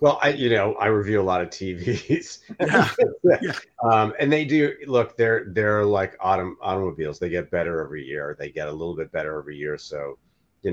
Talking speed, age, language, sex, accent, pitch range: 195 wpm, 30-49, English, male, American, 85-110 Hz